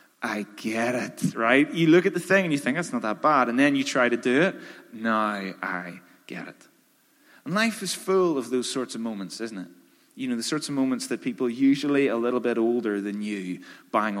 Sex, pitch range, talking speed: male, 105-160 Hz, 230 wpm